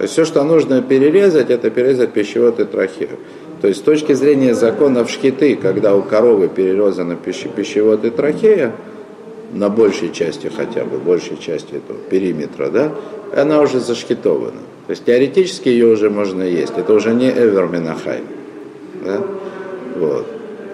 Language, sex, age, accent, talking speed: Russian, male, 50-69, native, 150 wpm